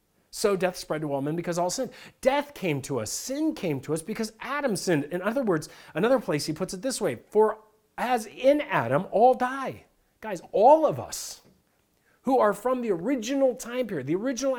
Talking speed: 200 wpm